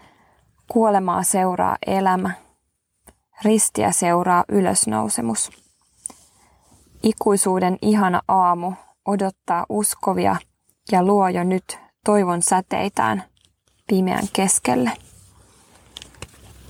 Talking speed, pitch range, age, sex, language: 70 wpm, 175-200 Hz, 20-39, female, Finnish